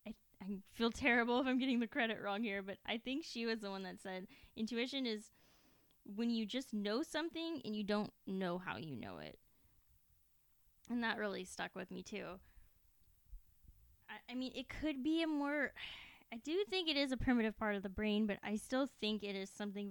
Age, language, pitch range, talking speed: 10-29, English, 195-230 Hz, 200 wpm